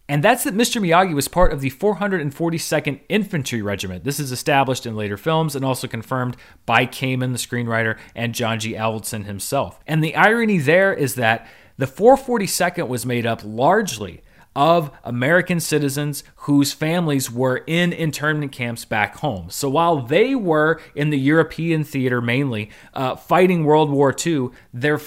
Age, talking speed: 30-49, 165 wpm